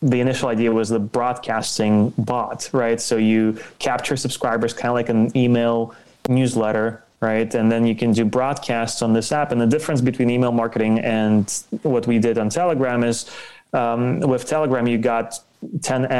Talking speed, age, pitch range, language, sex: 175 wpm, 20-39, 110-125 Hz, English, male